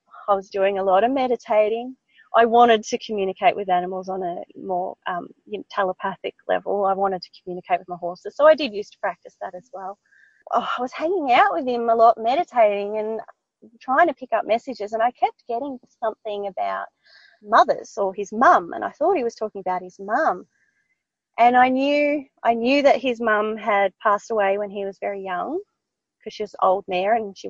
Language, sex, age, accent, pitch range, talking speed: English, female, 30-49, Australian, 205-260 Hz, 205 wpm